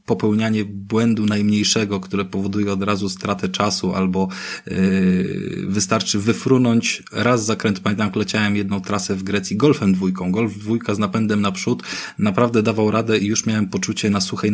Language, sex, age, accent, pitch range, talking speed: Polish, male, 20-39, native, 95-105 Hz, 155 wpm